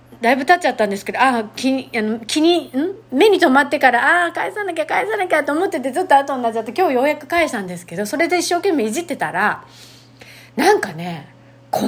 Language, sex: Japanese, female